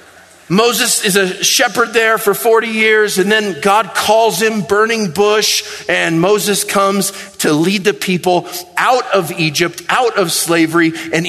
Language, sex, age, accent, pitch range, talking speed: English, male, 40-59, American, 175-225 Hz, 155 wpm